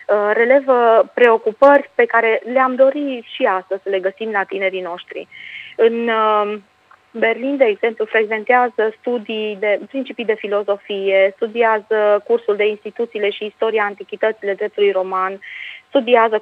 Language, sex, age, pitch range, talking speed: Romanian, female, 20-39, 195-230 Hz, 125 wpm